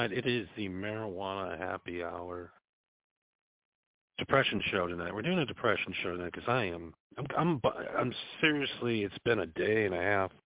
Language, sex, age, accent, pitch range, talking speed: English, male, 50-69, American, 90-120 Hz, 165 wpm